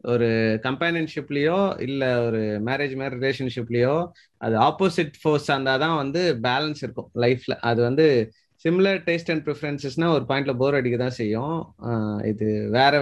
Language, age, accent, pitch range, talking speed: Tamil, 30-49, native, 125-165 Hz, 140 wpm